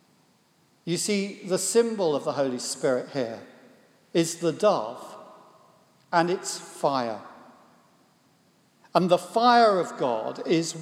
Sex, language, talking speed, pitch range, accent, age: male, English, 115 wpm, 185-220 Hz, British, 50-69